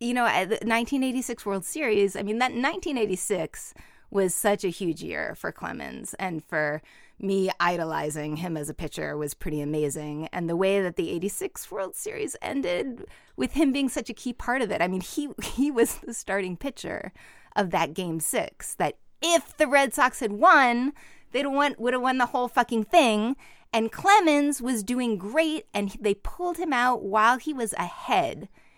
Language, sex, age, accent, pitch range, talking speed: English, female, 30-49, American, 170-245 Hz, 180 wpm